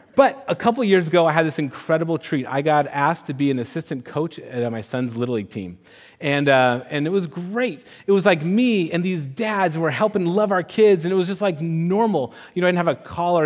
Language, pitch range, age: English, 140-200 Hz, 30-49